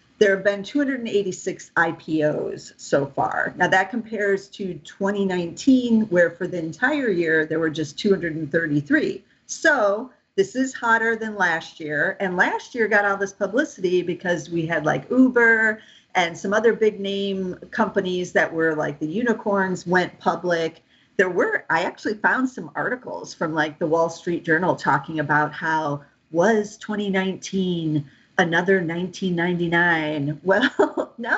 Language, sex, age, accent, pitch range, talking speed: English, female, 50-69, American, 160-205 Hz, 140 wpm